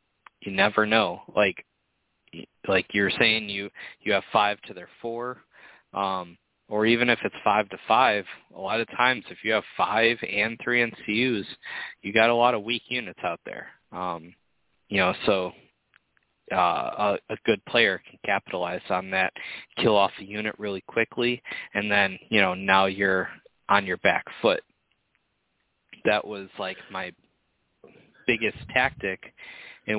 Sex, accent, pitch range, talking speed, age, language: male, American, 95-110 Hz, 155 wpm, 20-39, English